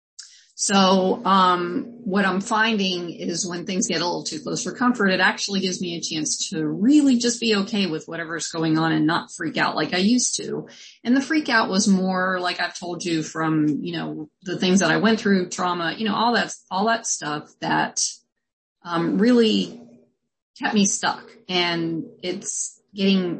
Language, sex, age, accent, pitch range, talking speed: English, female, 30-49, American, 165-215 Hz, 190 wpm